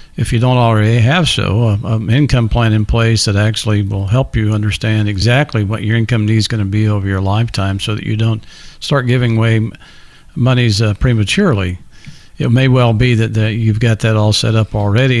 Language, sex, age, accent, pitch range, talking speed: English, male, 50-69, American, 105-125 Hz, 200 wpm